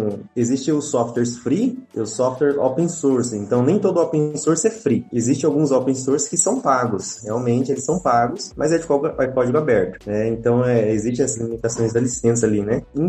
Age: 20-39